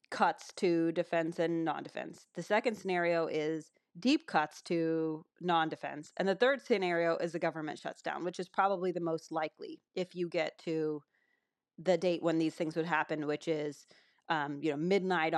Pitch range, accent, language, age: 160-185 Hz, American, English, 30-49